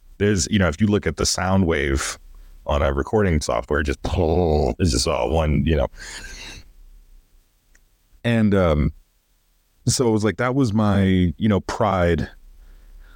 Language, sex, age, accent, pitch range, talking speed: English, male, 30-49, American, 75-100 Hz, 155 wpm